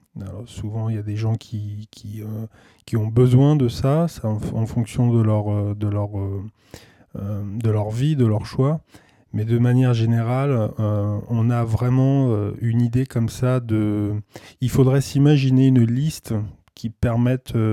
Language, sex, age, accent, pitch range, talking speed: French, male, 20-39, French, 105-130 Hz, 160 wpm